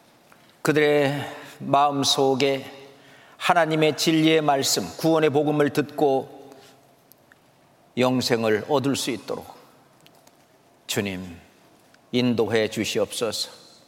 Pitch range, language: 120-155 Hz, Korean